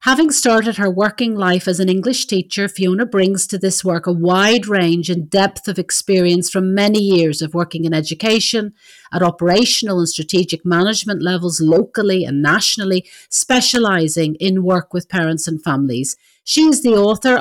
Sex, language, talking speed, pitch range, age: female, English, 165 wpm, 170-215 Hz, 40-59